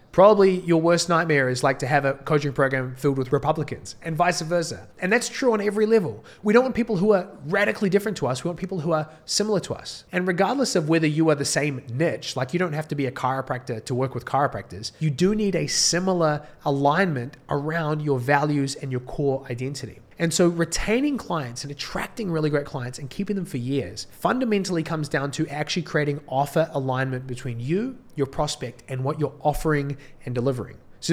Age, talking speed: 20-39, 210 wpm